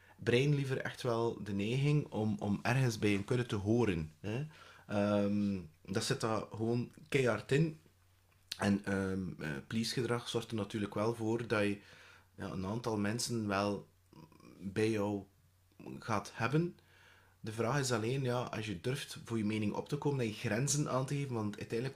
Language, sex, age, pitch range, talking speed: English, male, 30-49, 100-120 Hz, 170 wpm